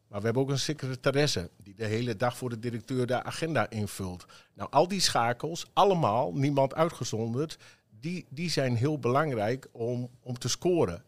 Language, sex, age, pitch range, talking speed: Dutch, male, 50-69, 110-135 Hz, 175 wpm